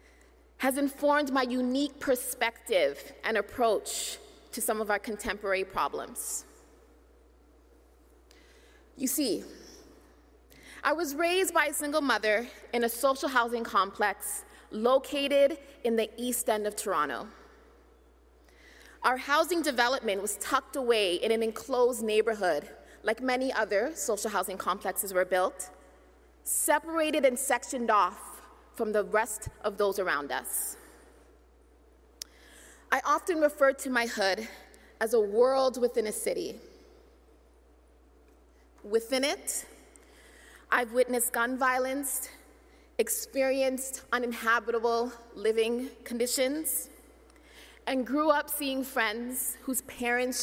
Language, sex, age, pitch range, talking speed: English, female, 20-39, 215-275 Hz, 110 wpm